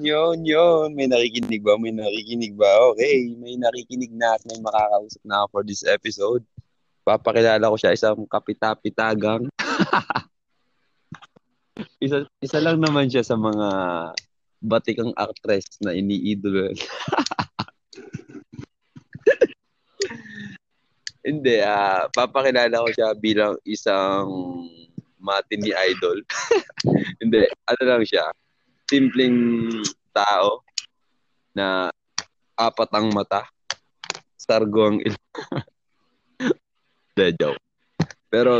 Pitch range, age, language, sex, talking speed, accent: 100-120 Hz, 20-39, Filipino, male, 90 wpm, native